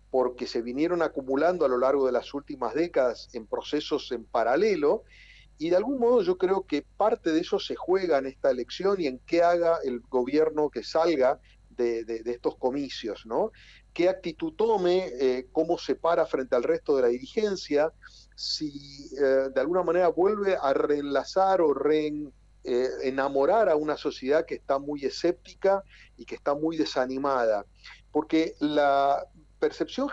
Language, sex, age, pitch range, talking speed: Spanish, male, 50-69, 135-180 Hz, 165 wpm